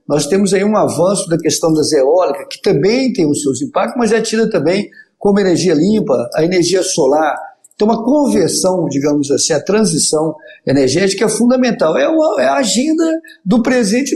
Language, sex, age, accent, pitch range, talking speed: Portuguese, male, 50-69, Brazilian, 155-235 Hz, 180 wpm